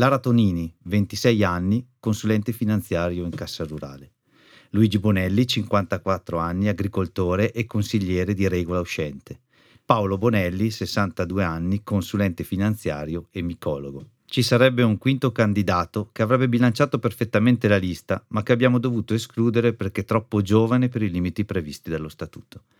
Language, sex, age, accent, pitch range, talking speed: Italian, male, 40-59, native, 95-120 Hz, 140 wpm